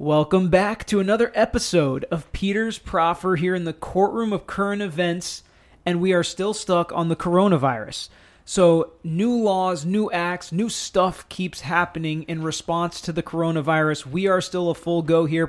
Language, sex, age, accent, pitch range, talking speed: English, male, 30-49, American, 150-175 Hz, 170 wpm